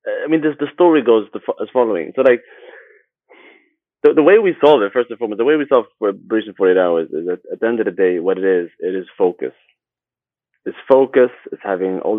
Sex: male